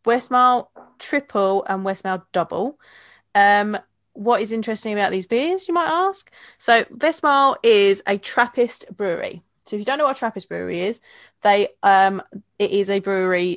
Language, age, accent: English, 20-39, British